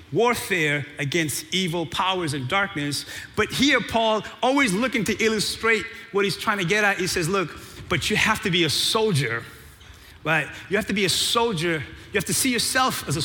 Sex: male